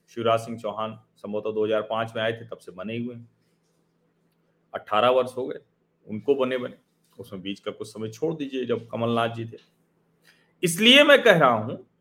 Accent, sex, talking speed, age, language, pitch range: native, male, 175 wpm, 40-59, Hindi, 135-175 Hz